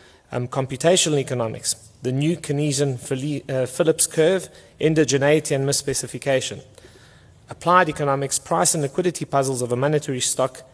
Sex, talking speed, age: male, 130 wpm, 30-49